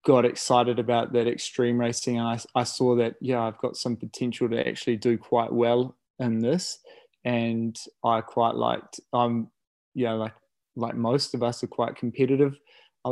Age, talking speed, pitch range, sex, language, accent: 20-39, 185 wpm, 115-125 Hz, male, English, Australian